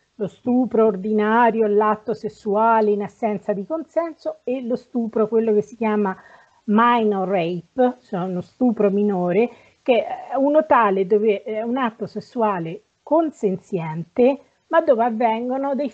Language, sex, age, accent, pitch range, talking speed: Italian, female, 40-59, native, 200-240 Hz, 135 wpm